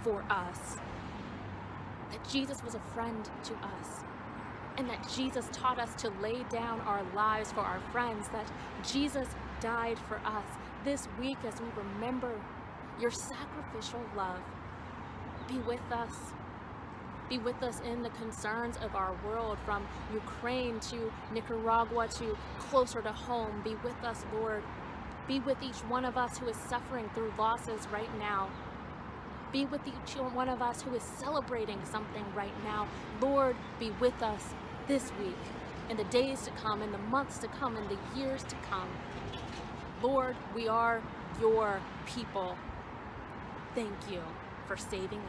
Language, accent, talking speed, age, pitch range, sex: English, American, 150 wpm, 20-39, 215-250 Hz, female